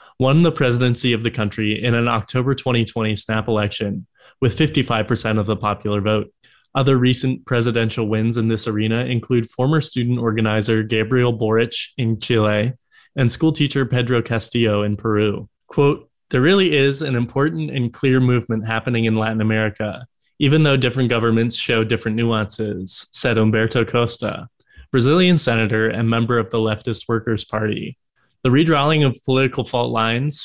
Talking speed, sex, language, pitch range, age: 155 wpm, male, English, 110-130 Hz, 20-39